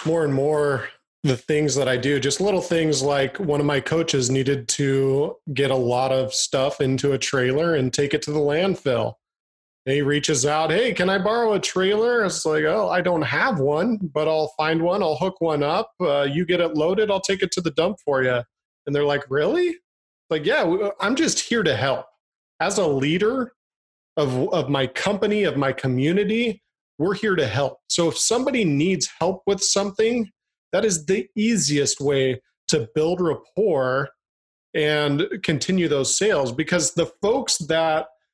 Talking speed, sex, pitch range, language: 185 wpm, male, 145-190 Hz, English